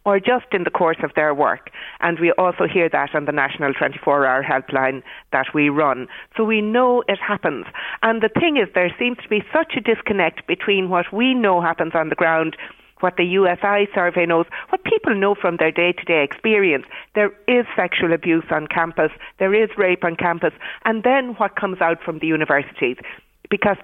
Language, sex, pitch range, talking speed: English, female, 165-220 Hz, 195 wpm